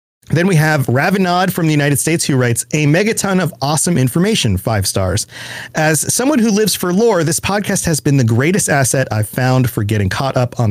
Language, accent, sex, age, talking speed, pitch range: English, American, male, 40-59, 205 wpm, 115-155 Hz